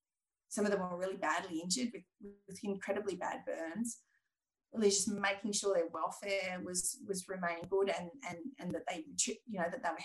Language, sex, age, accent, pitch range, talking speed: English, female, 30-49, Australian, 195-250 Hz, 205 wpm